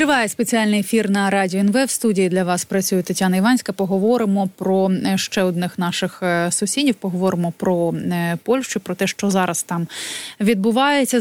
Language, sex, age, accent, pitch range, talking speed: Ukrainian, female, 20-39, native, 185-225 Hz, 150 wpm